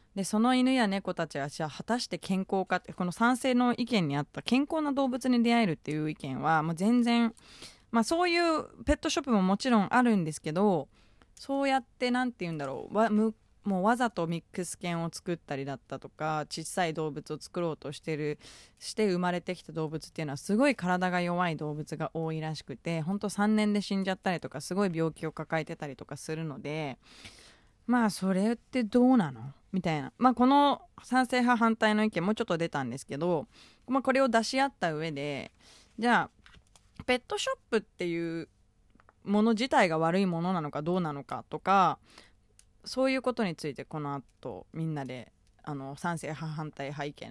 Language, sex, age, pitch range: Japanese, female, 20-39, 155-230 Hz